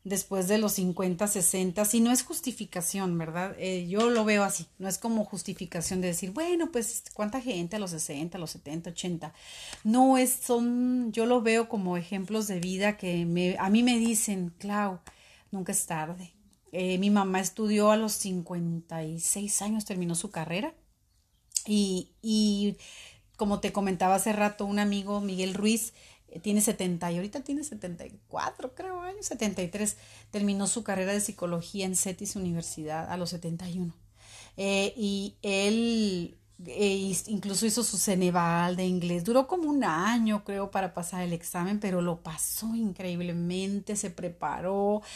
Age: 30-49